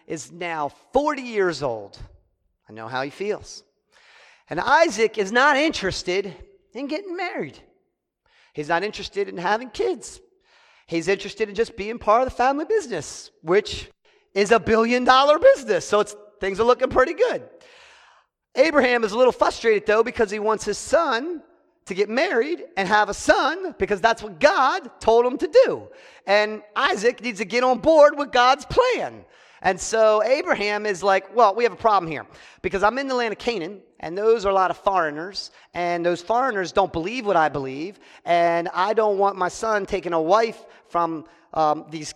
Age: 40-59